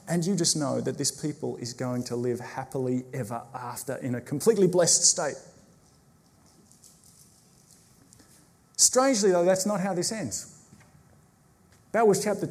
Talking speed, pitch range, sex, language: 140 wpm, 145-190 Hz, male, English